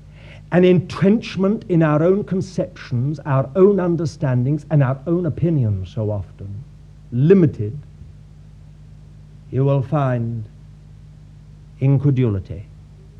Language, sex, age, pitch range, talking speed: English, male, 50-69, 130-185 Hz, 90 wpm